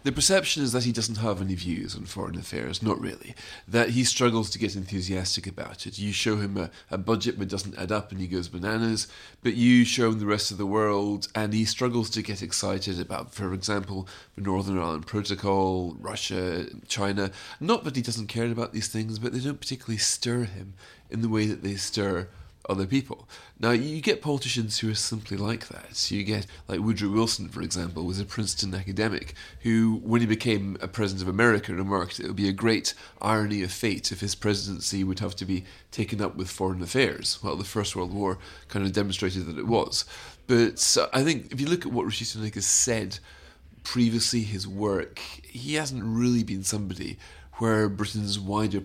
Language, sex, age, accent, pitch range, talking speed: English, male, 30-49, British, 95-115 Hz, 205 wpm